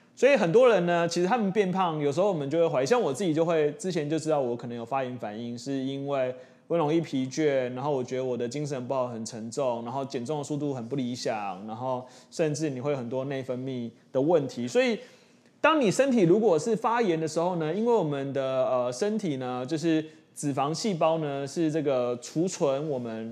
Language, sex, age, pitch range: Chinese, male, 20-39, 130-180 Hz